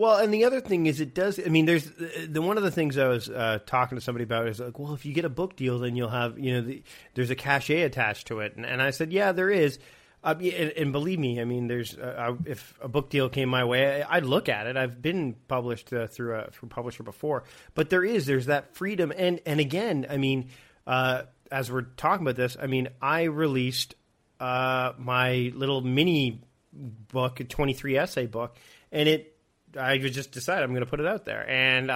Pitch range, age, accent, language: 125-155 Hz, 40-59, American, English